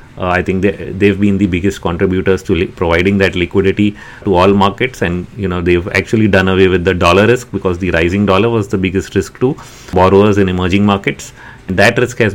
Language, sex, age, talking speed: English, male, 30-49, 220 wpm